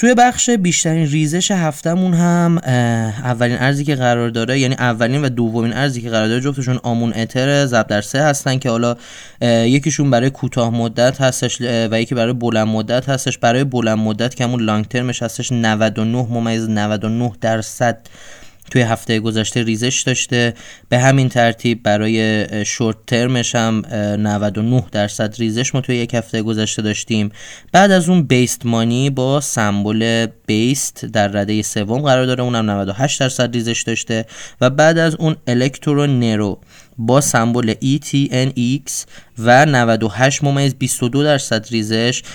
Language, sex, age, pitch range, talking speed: Persian, male, 20-39, 110-135 Hz, 140 wpm